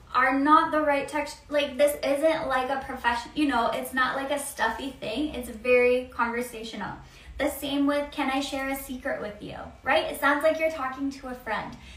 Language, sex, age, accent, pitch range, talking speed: English, female, 10-29, American, 250-300 Hz, 205 wpm